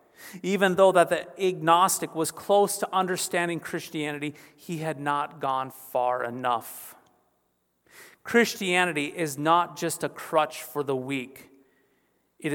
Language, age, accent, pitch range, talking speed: English, 40-59, American, 135-175 Hz, 125 wpm